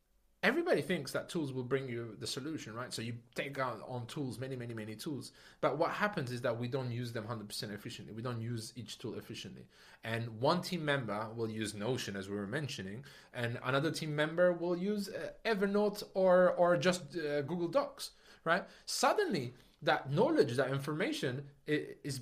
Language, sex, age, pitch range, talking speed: English, male, 20-39, 125-175 Hz, 190 wpm